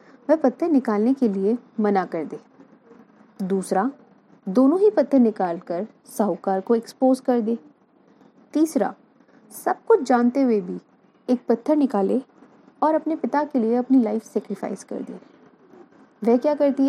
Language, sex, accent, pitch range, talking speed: Hindi, female, native, 225-285 Hz, 140 wpm